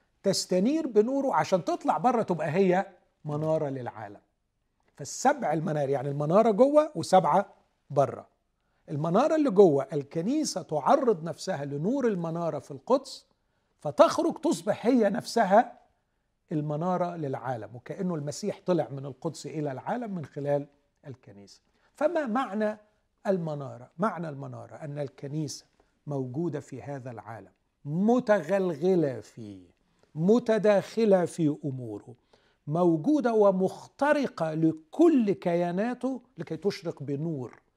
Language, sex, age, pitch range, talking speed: Arabic, male, 50-69, 140-205 Hz, 105 wpm